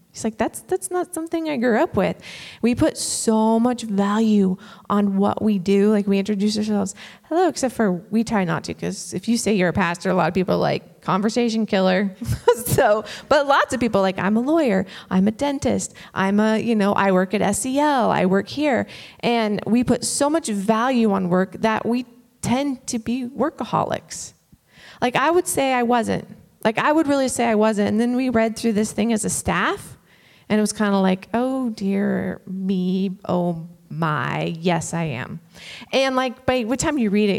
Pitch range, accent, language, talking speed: 190-245 Hz, American, English, 205 wpm